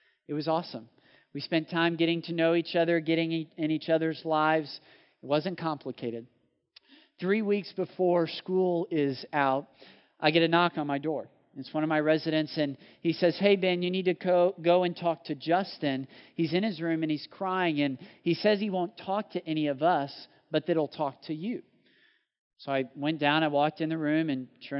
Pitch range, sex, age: 140-170 Hz, male, 40-59